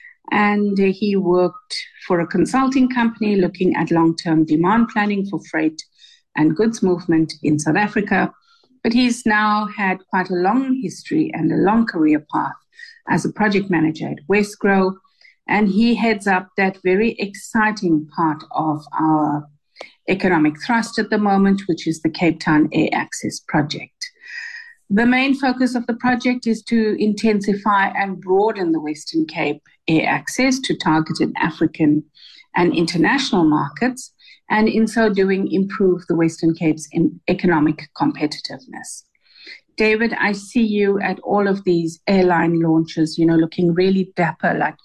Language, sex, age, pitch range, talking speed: English, female, 50-69, 165-220 Hz, 145 wpm